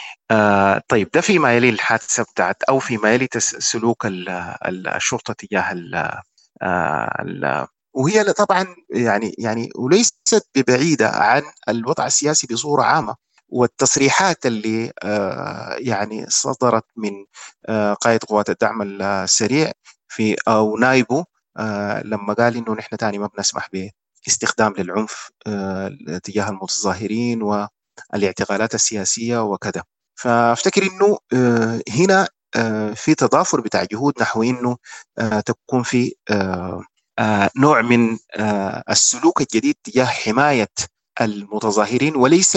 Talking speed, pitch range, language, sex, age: 95 wpm, 105-125 Hz, English, male, 30-49